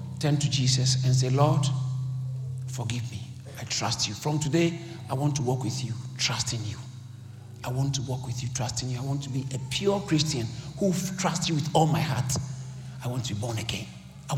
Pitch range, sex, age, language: 125-150 Hz, male, 50-69, English